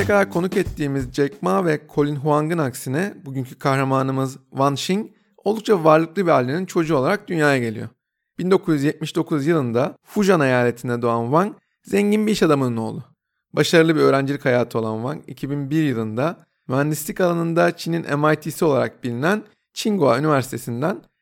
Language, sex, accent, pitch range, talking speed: Turkish, male, native, 135-180 Hz, 135 wpm